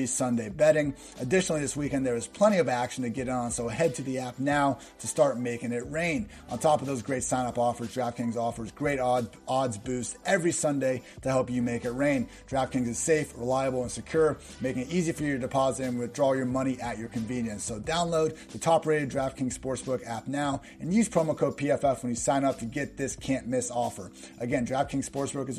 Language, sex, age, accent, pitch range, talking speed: English, male, 30-49, American, 125-155 Hz, 215 wpm